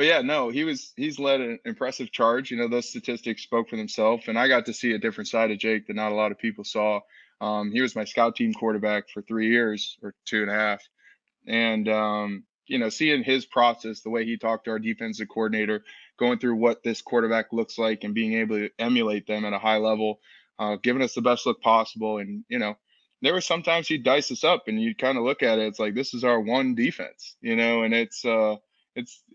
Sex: male